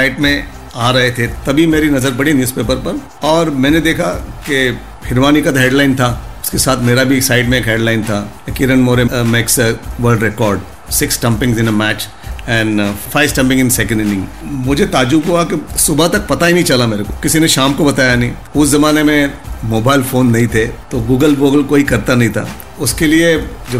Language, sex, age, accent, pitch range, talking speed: Hindi, male, 50-69, native, 110-135 Hz, 200 wpm